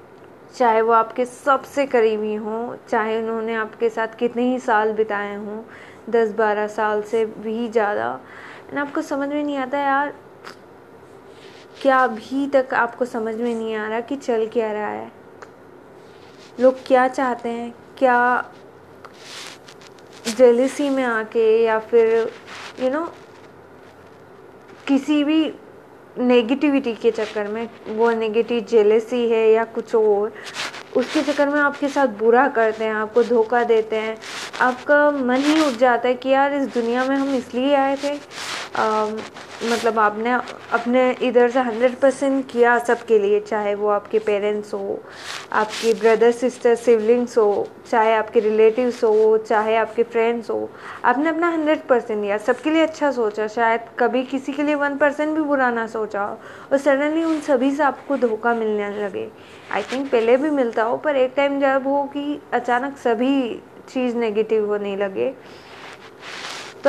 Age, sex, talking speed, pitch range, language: 20-39, female, 155 wpm, 225-275 Hz, Hindi